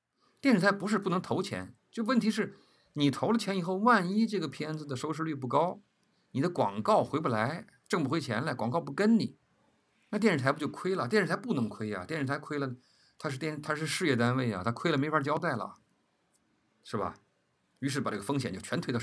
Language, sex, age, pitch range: Chinese, male, 50-69, 110-165 Hz